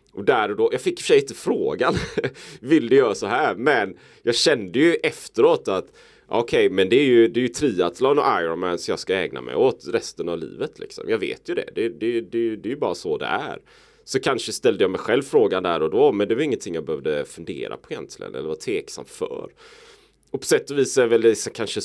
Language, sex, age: Swedish, male, 30-49